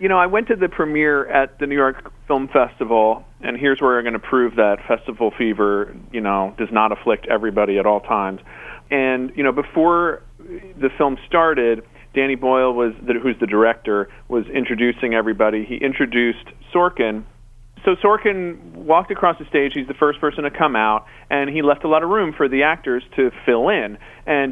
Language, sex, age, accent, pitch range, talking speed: English, male, 40-59, American, 115-150 Hz, 195 wpm